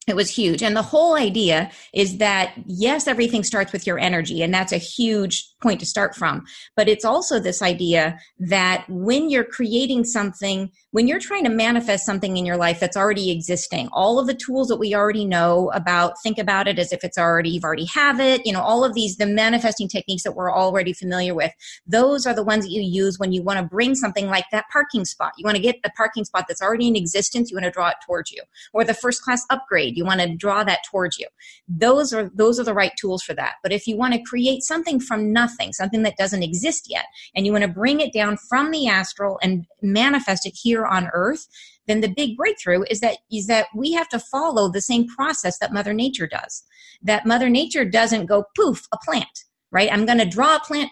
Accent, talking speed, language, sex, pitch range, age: American, 235 wpm, English, female, 190-240 Hz, 30-49